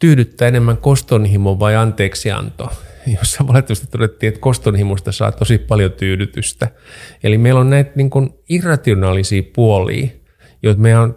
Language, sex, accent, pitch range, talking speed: Finnish, male, native, 100-125 Hz, 130 wpm